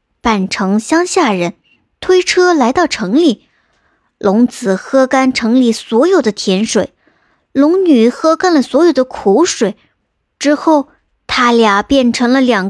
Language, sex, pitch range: Chinese, male, 220-300 Hz